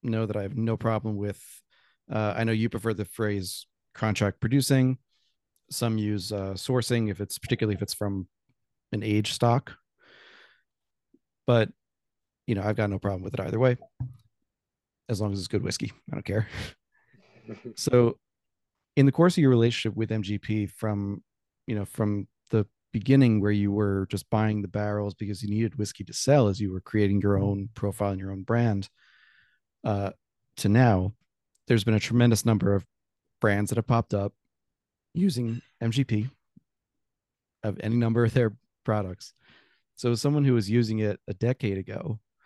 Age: 30-49